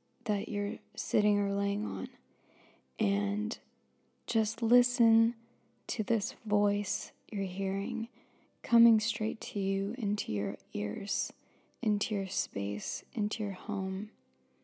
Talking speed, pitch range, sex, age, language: 110 wpm, 195-230 Hz, female, 20-39, English